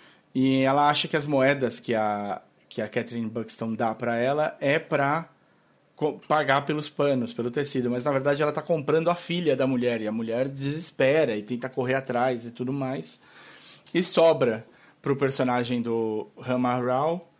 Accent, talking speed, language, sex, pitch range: Brazilian, 175 wpm, Portuguese, male, 120-155 Hz